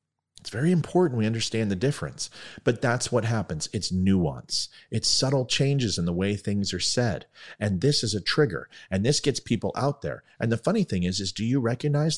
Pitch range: 100-140 Hz